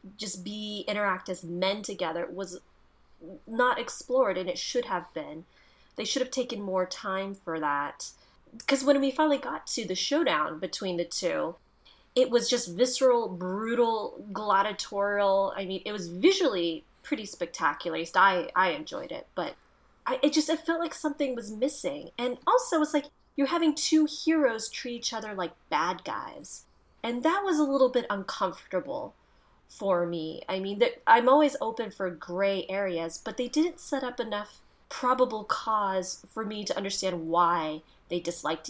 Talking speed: 165 wpm